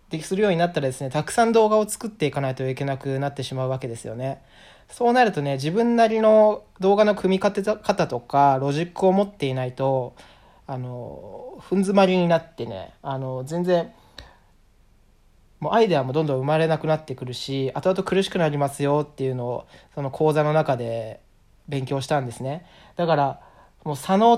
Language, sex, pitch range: Japanese, male, 130-180 Hz